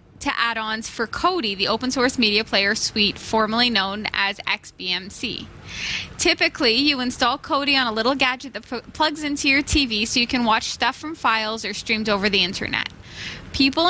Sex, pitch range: female, 220-290 Hz